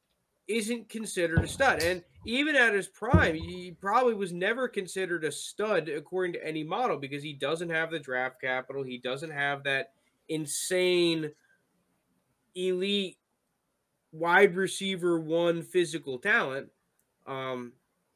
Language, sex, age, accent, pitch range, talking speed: English, male, 20-39, American, 155-205 Hz, 130 wpm